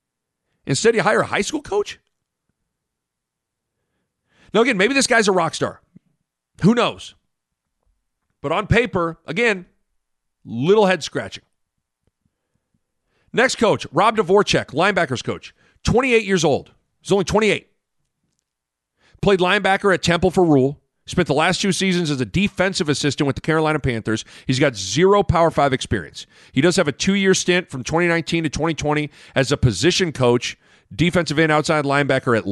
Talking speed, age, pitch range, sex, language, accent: 150 wpm, 40-59, 130-185 Hz, male, English, American